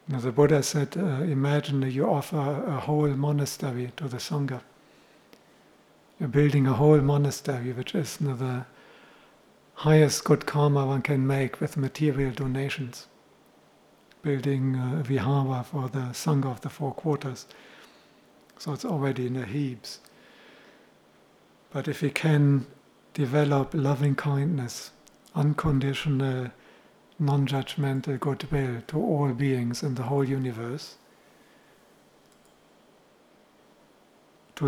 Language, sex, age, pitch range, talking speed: English, male, 60-79, 130-145 Hz, 110 wpm